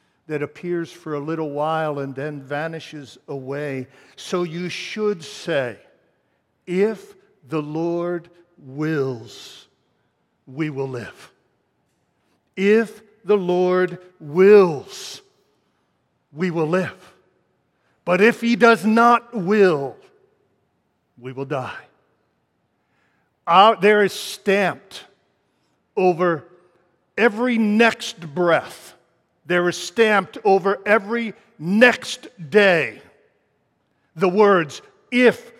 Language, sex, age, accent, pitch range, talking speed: English, male, 60-79, American, 160-225 Hz, 90 wpm